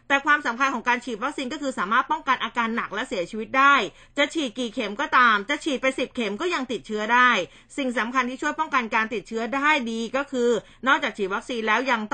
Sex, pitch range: female, 225-280 Hz